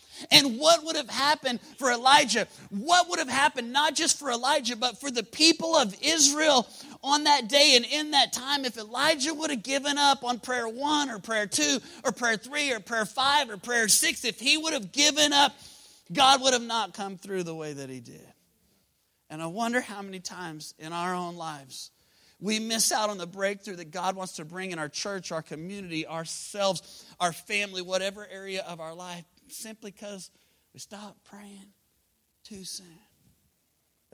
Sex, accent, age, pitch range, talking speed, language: male, American, 30-49, 165-245 Hz, 190 wpm, English